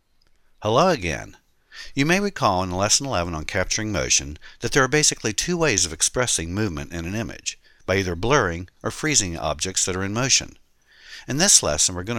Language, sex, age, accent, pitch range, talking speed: English, male, 60-79, American, 85-120 Hz, 185 wpm